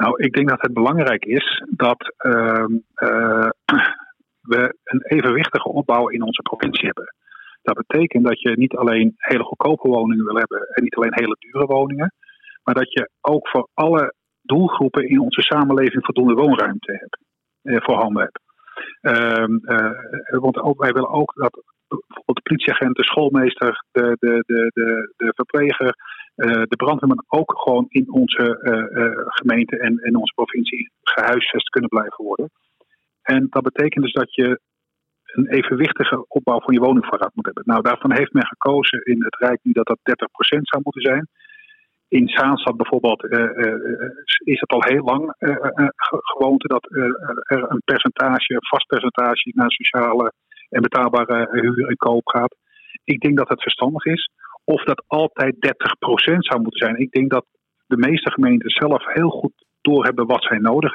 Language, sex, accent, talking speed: Dutch, male, Dutch, 170 wpm